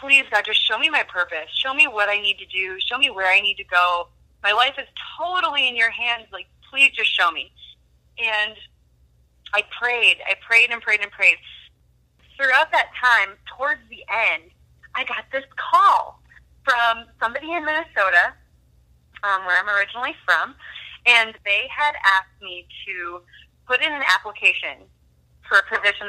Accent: American